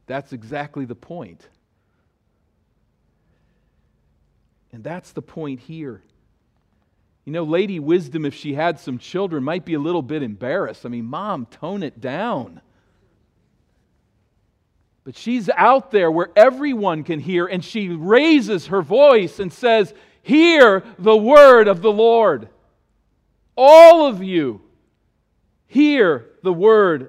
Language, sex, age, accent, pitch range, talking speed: English, male, 50-69, American, 130-190 Hz, 125 wpm